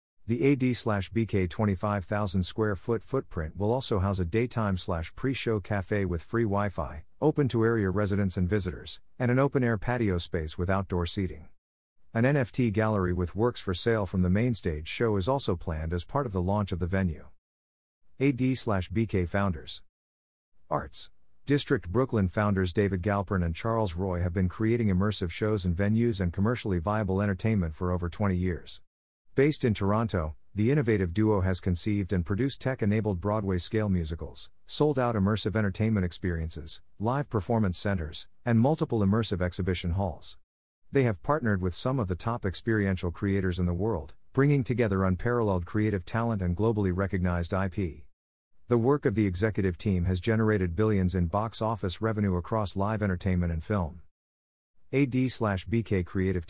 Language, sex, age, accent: English, male, 50-69, American